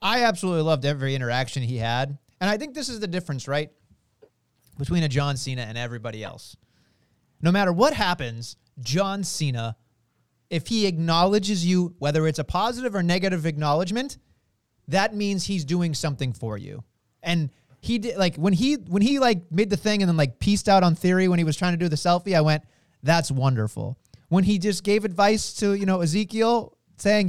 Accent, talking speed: American, 190 wpm